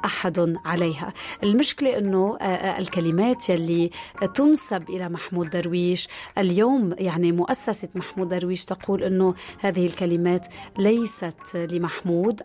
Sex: female